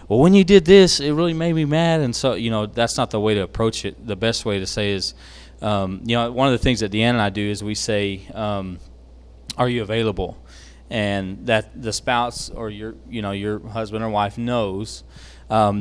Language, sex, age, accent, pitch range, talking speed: English, male, 20-39, American, 95-115 Hz, 230 wpm